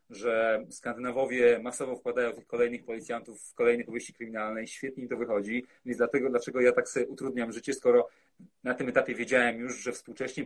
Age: 30-49